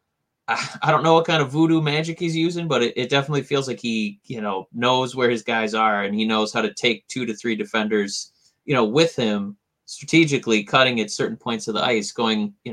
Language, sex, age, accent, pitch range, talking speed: English, male, 20-39, American, 105-160 Hz, 225 wpm